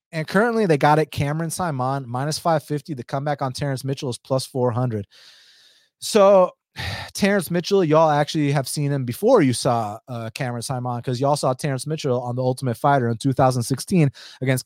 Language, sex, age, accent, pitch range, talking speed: English, male, 30-49, American, 120-145 Hz, 175 wpm